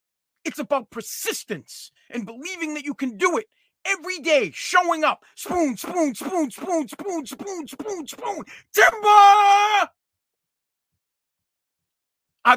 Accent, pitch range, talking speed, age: American, 205-285 Hz, 120 wpm, 40-59